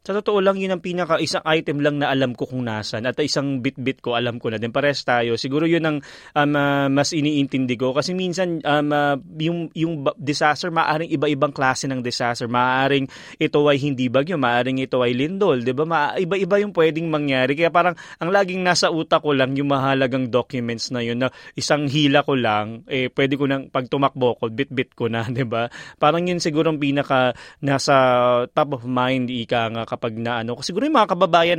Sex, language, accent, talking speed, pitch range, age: male, Filipino, native, 200 wpm, 130-160 Hz, 20-39